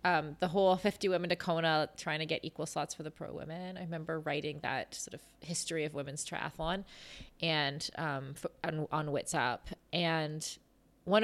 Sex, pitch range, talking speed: female, 145-180 Hz, 175 wpm